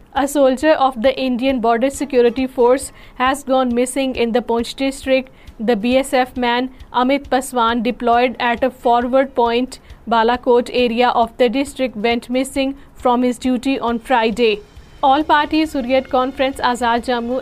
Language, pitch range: Urdu, 240-260 Hz